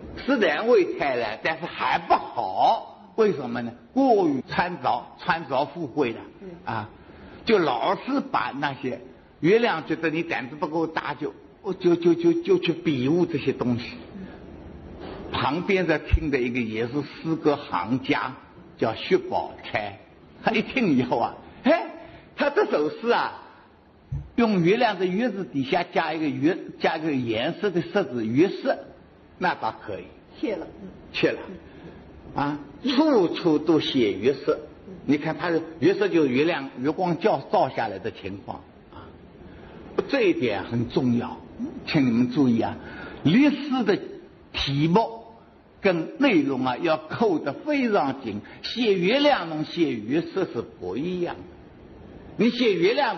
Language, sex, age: Chinese, male, 60-79